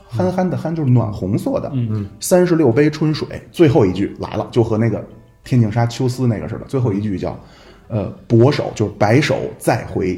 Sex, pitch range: male, 110-145 Hz